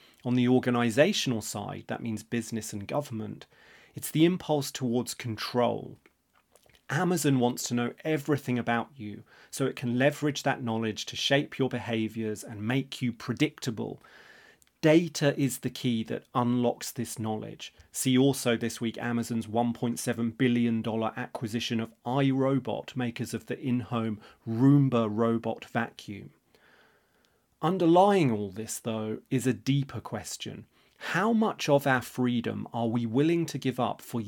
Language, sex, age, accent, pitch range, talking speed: English, male, 30-49, British, 115-140 Hz, 140 wpm